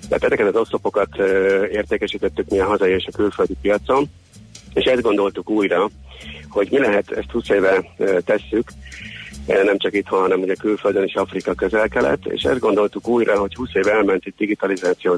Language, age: Hungarian, 50-69